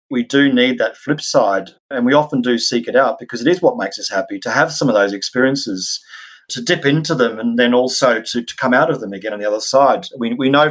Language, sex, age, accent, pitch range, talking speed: English, male, 30-49, Australian, 120-150 Hz, 260 wpm